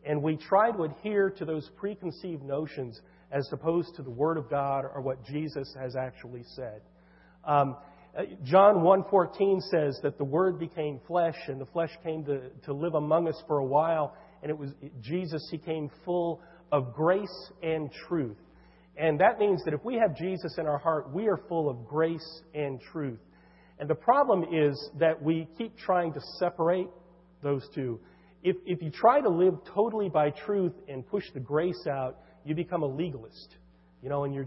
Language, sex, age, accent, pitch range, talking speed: English, male, 40-59, American, 140-170 Hz, 185 wpm